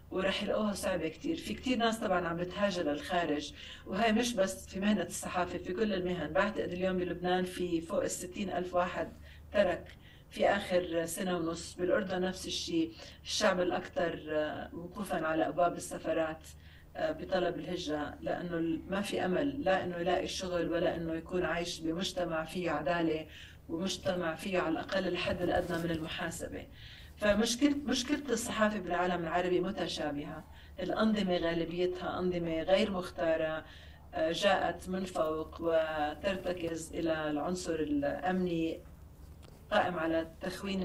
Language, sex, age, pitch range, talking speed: Arabic, female, 40-59, 160-190 Hz, 130 wpm